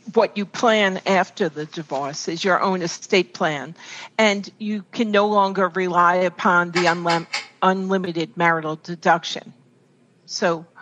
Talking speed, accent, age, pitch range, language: 130 wpm, American, 50-69, 165-195 Hz, English